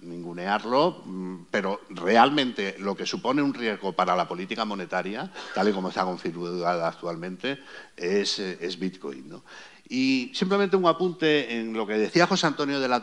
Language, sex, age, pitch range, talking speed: Spanish, male, 60-79, 110-165 Hz, 150 wpm